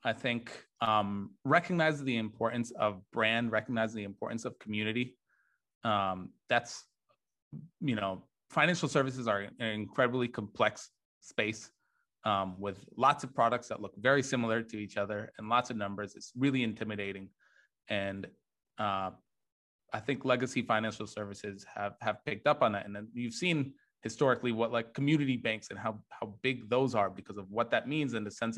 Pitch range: 105-135 Hz